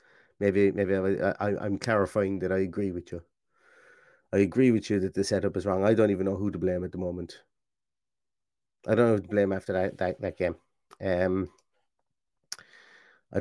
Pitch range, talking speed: 100-130 Hz, 190 wpm